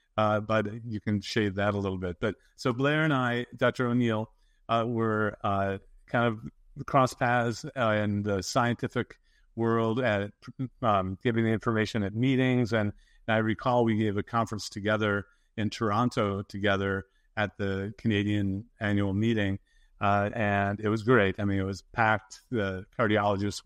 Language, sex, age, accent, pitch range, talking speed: English, male, 50-69, American, 100-115 Hz, 160 wpm